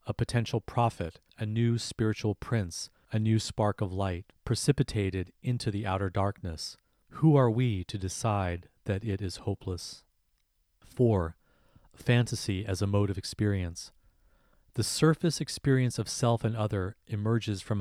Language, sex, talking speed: English, male, 140 wpm